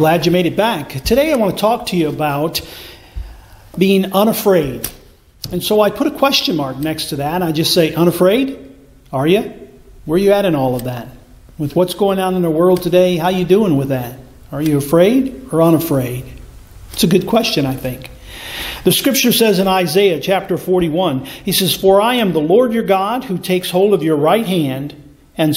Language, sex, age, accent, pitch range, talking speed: English, male, 50-69, American, 145-200 Hz, 210 wpm